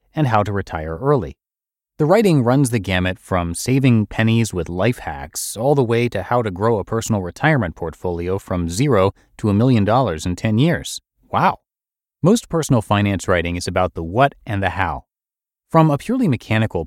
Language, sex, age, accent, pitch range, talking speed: English, male, 30-49, American, 95-125 Hz, 185 wpm